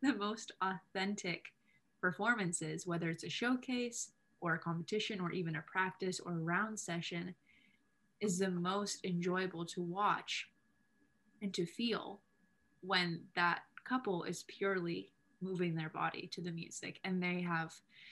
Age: 20-39